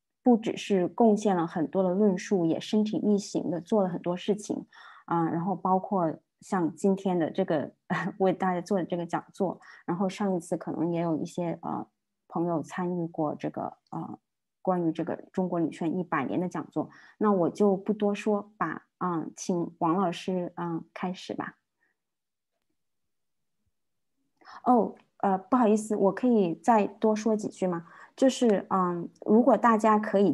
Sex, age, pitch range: female, 20-39, 175-215 Hz